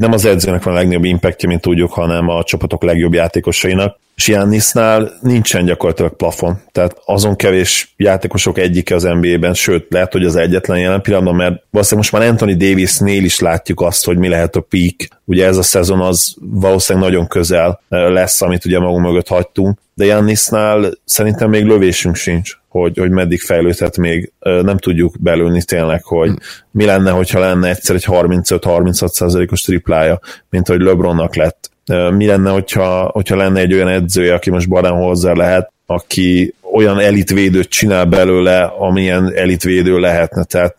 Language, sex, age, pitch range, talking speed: Hungarian, male, 30-49, 90-100 Hz, 165 wpm